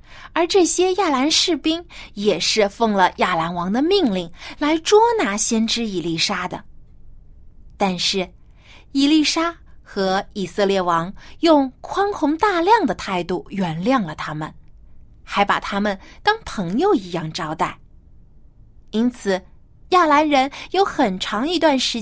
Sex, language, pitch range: female, Chinese, 175-290 Hz